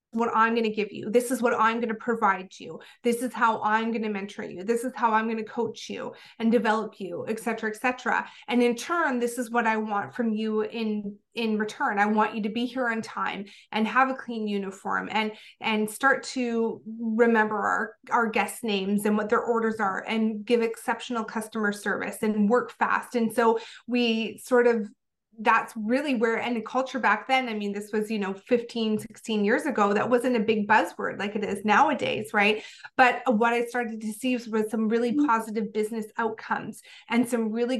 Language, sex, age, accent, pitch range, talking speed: English, female, 30-49, American, 215-240 Hz, 210 wpm